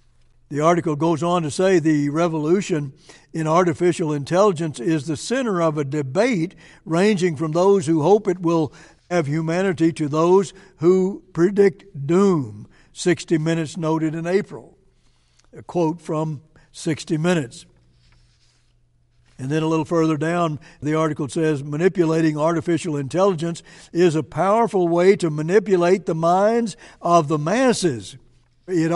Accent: American